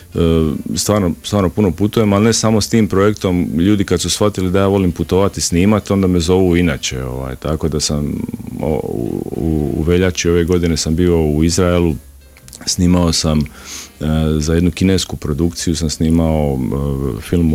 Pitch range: 70-85 Hz